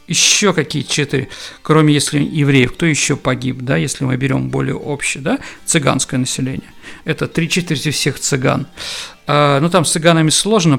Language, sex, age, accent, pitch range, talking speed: Russian, male, 50-69, native, 140-175 Hz, 155 wpm